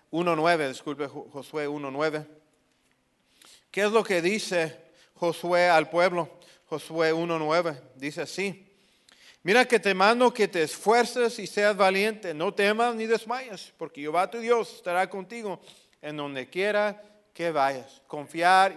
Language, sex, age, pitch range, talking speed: English, male, 40-59, 170-235 Hz, 140 wpm